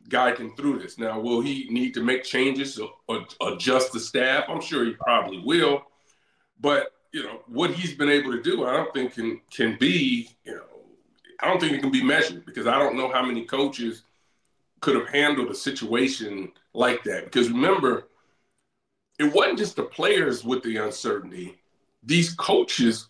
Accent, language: American, English